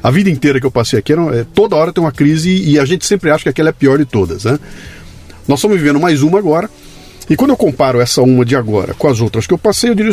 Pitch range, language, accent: 120-155 Hz, Portuguese, Brazilian